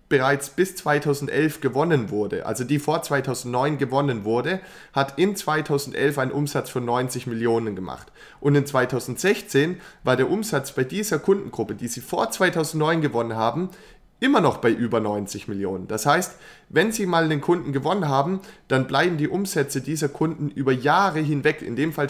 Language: German